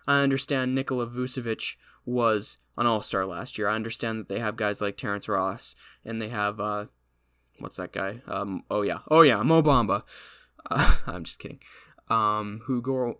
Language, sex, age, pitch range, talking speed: English, male, 10-29, 105-130 Hz, 175 wpm